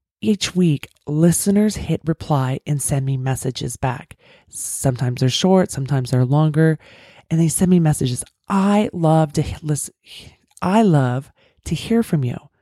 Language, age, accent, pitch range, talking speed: English, 20-39, American, 130-155 Hz, 150 wpm